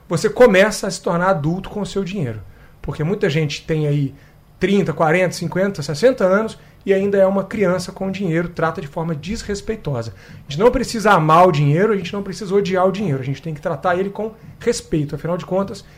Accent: Brazilian